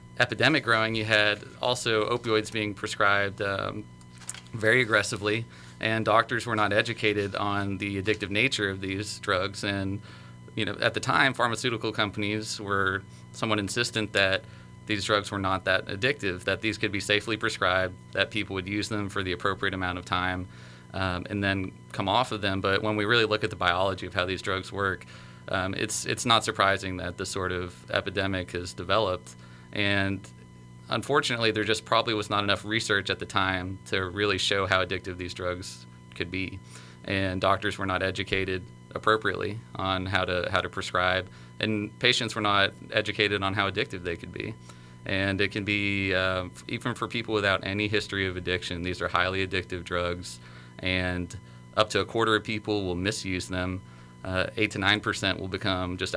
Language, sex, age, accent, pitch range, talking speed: English, male, 30-49, American, 90-105 Hz, 180 wpm